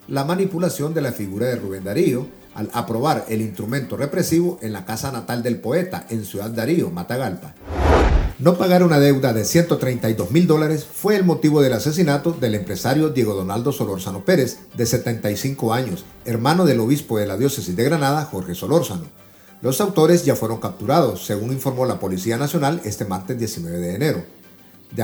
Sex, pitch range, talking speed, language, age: male, 110-160 Hz, 170 wpm, Spanish, 50-69